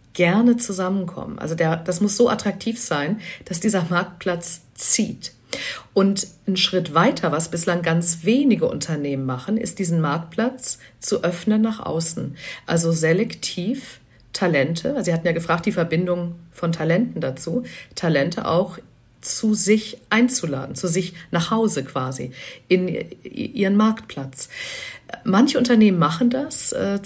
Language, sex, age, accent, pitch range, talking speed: German, female, 50-69, German, 170-215 Hz, 135 wpm